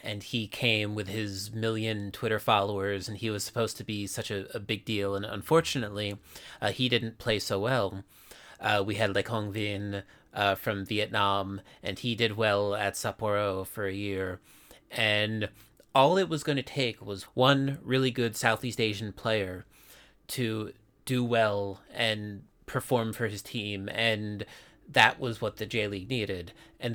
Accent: American